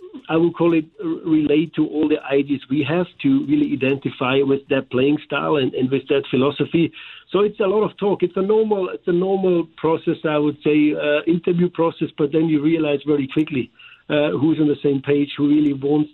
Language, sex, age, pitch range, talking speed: English, male, 50-69, 140-165 Hz, 210 wpm